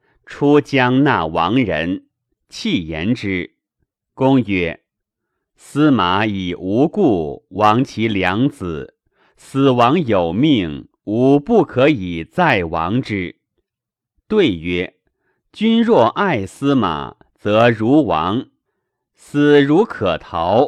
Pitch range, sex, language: 95-145 Hz, male, Chinese